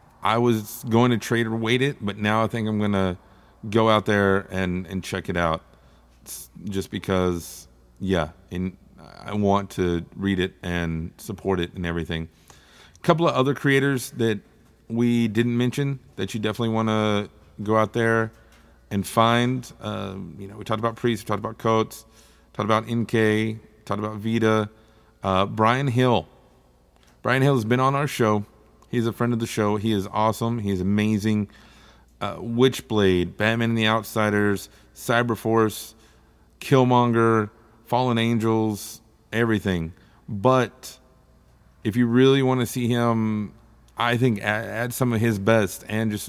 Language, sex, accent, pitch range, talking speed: English, male, American, 95-115 Hz, 160 wpm